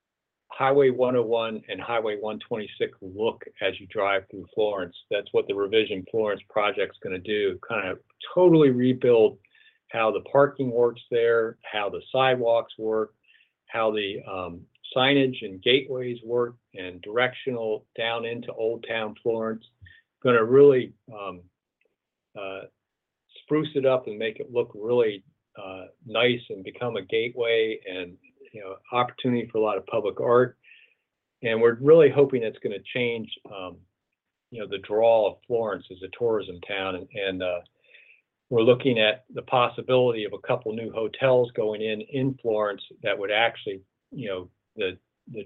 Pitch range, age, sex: 110-155 Hz, 50-69, male